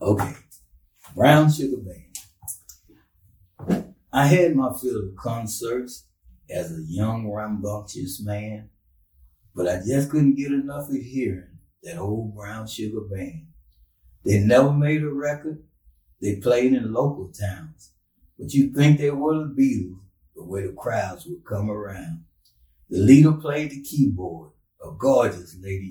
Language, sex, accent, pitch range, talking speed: English, male, American, 95-140 Hz, 140 wpm